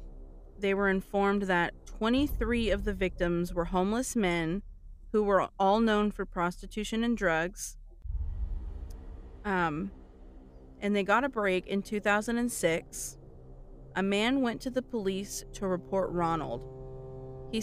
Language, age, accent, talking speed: English, 30-49, American, 125 wpm